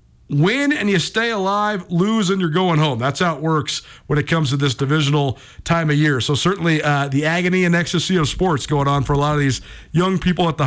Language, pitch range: English, 145-180 Hz